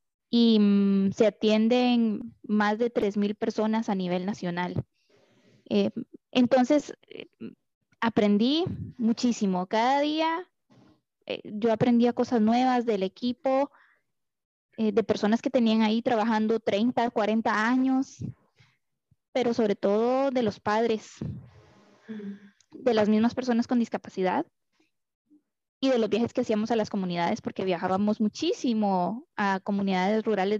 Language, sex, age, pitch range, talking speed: Spanish, female, 20-39, 205-245 Hz, 120 wpm